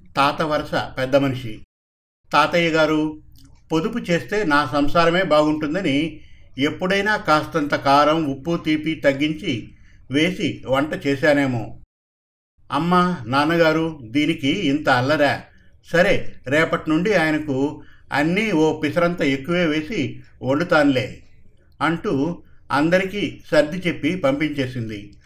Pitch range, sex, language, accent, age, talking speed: 140-170 Hz, male, Telugu, native, 50-69, 95 wpm